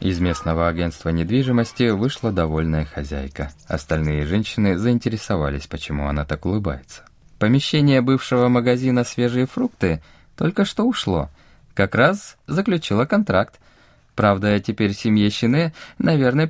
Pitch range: 85-135 Hz